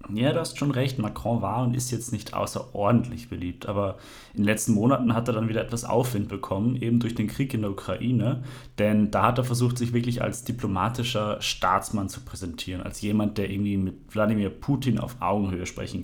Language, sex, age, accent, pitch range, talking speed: German, male, 30-49, German, 100-120 Hz, 200 wpm